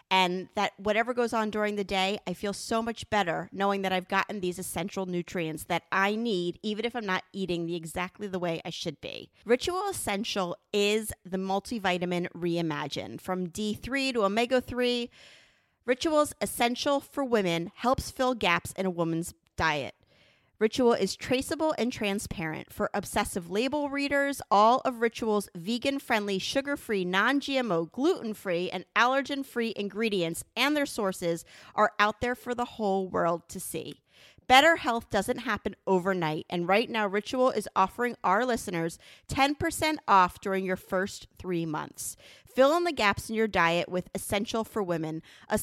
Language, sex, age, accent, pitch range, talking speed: English, female, 30-49, American, 180-235 Hz, 155 wpm